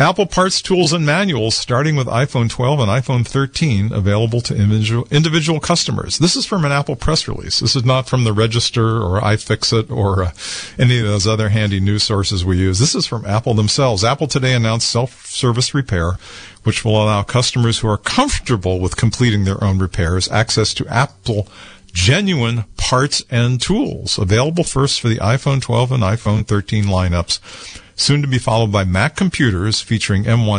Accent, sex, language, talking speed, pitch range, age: American, male, English, 175 wpm, 100-130 Hz, 50-69